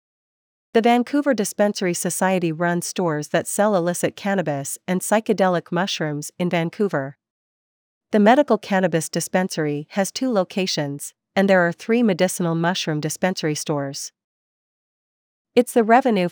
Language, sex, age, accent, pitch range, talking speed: English, female, 40-59, American, 165-205 Hz, 120 wpm